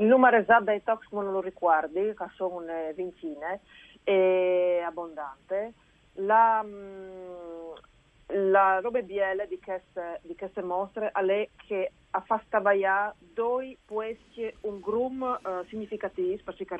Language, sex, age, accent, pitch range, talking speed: Italian, female, 40-59, native, 165-210 Hz, 115 wpm